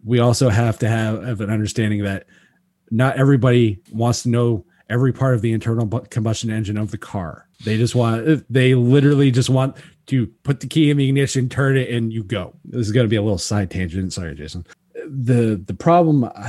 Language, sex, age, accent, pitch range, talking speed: English, male, 30-49, American, 105-130 Hz, 200 wpm